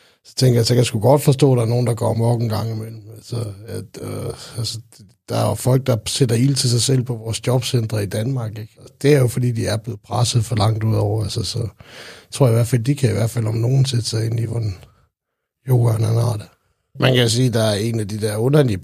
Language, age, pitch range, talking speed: Danish, 60-79, 105-120 Hz, 260 wpm